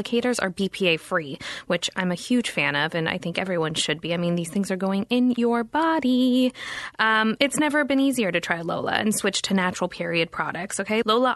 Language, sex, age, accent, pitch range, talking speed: English, female, 20-39, American, 180-235 Hz, 205 wpm